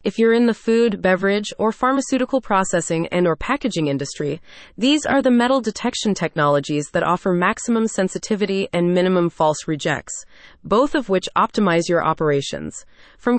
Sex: female